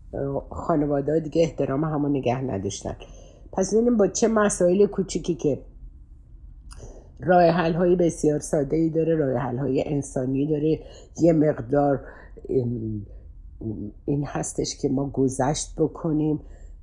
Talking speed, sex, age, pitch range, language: 110 wpm, female, 60-79, 125-175 Hz, Persian